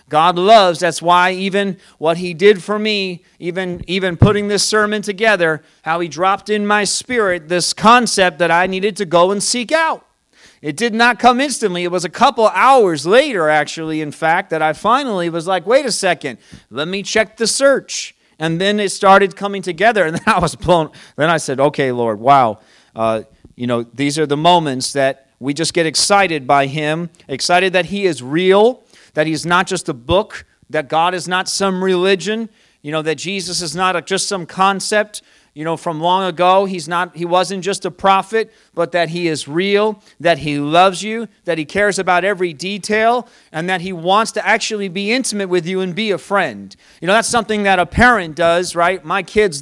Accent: American